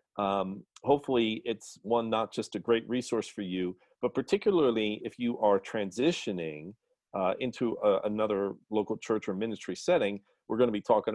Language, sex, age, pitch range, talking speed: English, male, 40-59, 105-135 Hz, 160 wpm